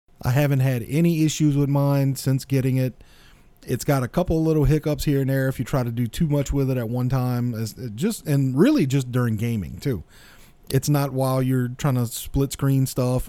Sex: male